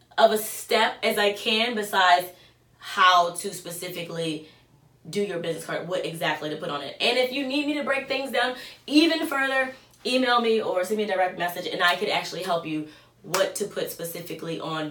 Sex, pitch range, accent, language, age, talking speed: female, 175-245 Hz, American, English, 20-39, 200 wpm